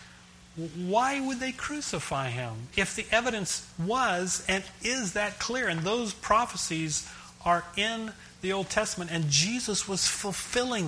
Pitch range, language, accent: 125-195 Hz, English, American